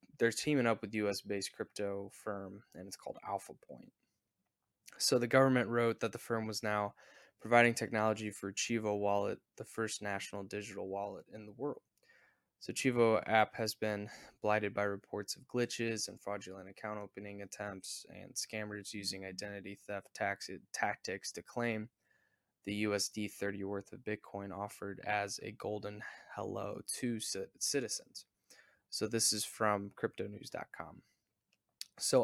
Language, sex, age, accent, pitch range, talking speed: English, male, 10-29, American, 105-115 Hz, 145 wpm